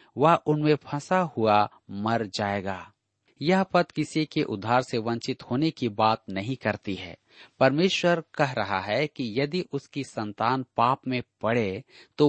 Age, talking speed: 40-59, 150 wpm